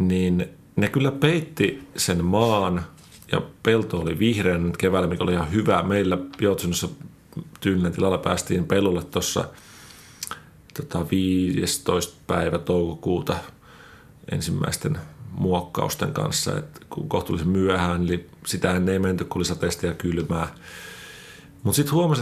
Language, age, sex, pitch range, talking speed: Finnish, 40-59, male, 90-115 Hz, 115 wpm